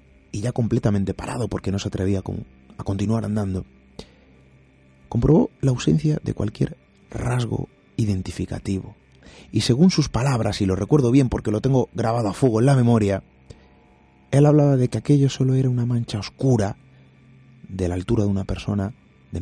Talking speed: 160 wpm